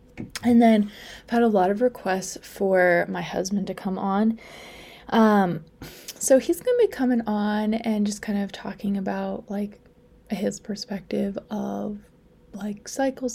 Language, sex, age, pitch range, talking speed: English, female, 20-39, 200-235 Hz, 155 wpm